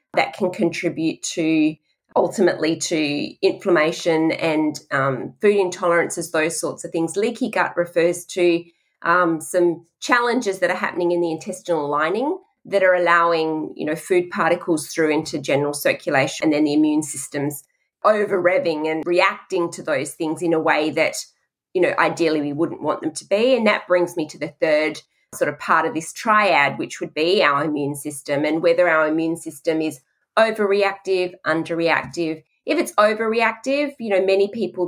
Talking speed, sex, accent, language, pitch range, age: 170 wpm, female, Australian, English, 160-200 Hz, 20-39